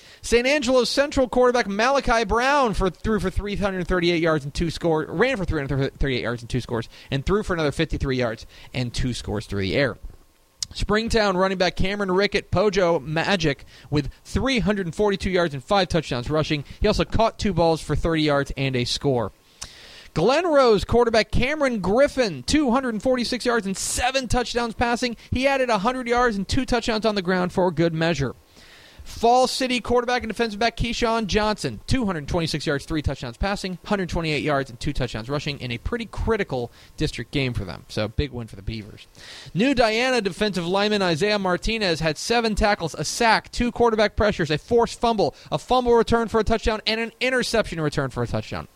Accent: American